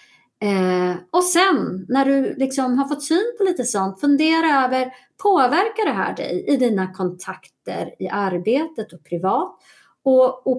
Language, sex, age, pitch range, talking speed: Swedish, female, 30-49, 195-300 Hz, 140 wpm